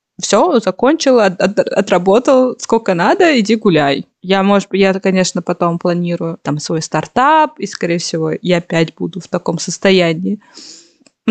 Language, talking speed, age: Russian, 140 wpm, 20-39